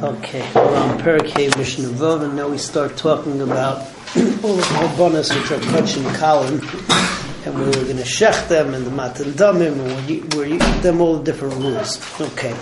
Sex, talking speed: male, 175 wpm